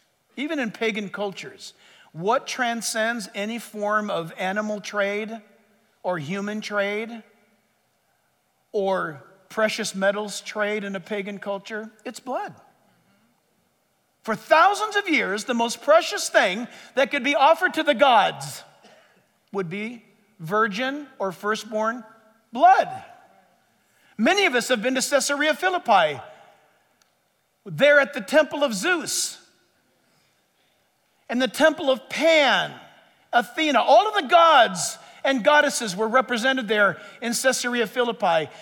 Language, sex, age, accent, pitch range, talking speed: English, male, 50-69, American, 215-290 Hz, 120 wpm